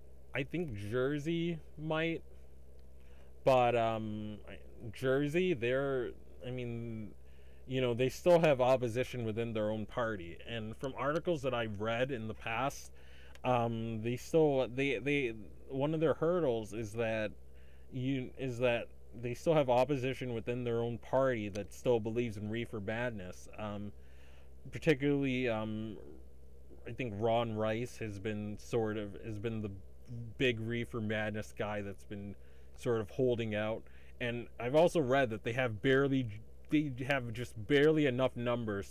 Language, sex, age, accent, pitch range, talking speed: English, male, 20-39, American, 100-130 Hz, 145 wpm